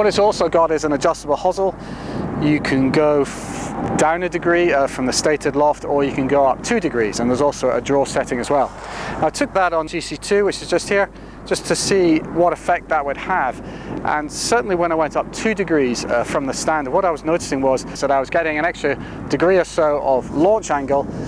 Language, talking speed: English, 230 wpm